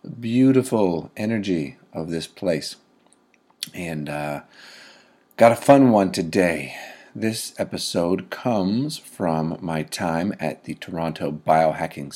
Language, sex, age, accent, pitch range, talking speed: English, male, 40-59, American, 80-110 Hz, 110 wpm